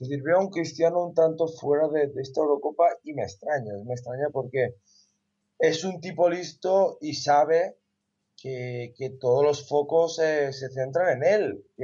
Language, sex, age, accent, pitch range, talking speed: Spanish, male, 20-39, Spanish, 125-170 Hz, 180 wpm